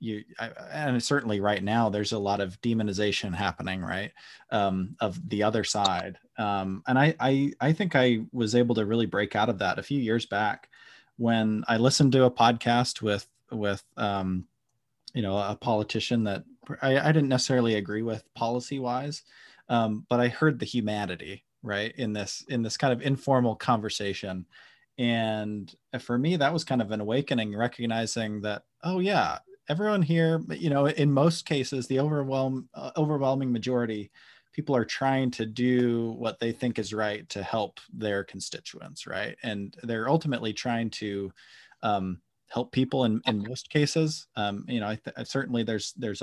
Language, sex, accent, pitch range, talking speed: English, male, American, 105-130 Hz, 165 wpm